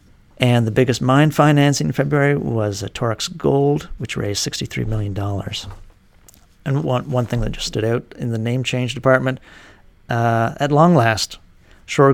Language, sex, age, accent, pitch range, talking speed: English, male, 50-69, American, 105-125 Hz, 160 wpm